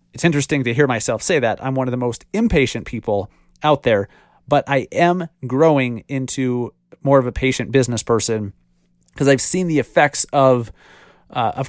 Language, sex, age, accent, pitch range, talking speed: English, male, 30-49, American, 120-155 Hz, 180 wpm